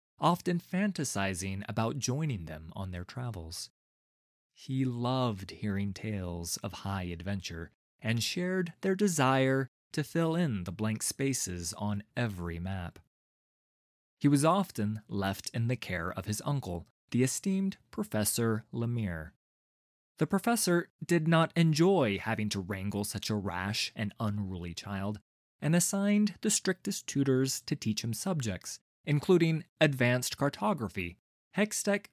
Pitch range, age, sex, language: 100-155 Hz, 20-39, male, English